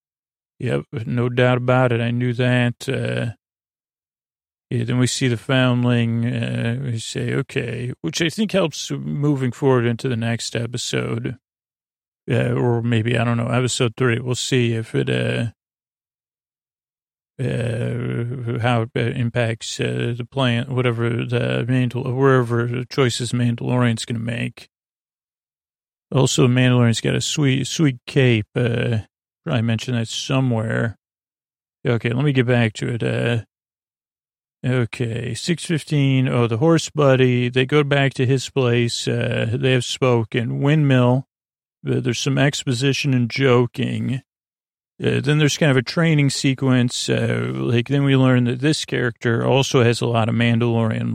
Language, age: English, 40-59